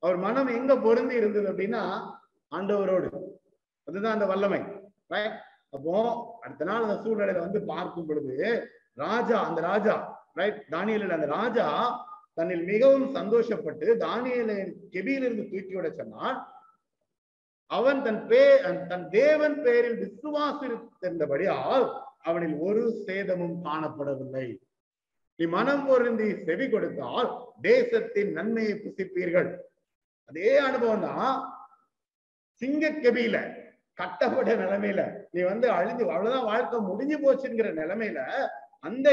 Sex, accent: male, native